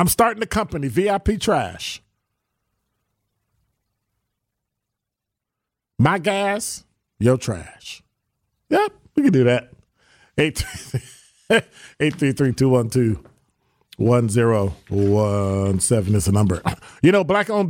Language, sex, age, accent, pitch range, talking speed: English, male, 40-59, American, 105-135 Hz, 100 wpm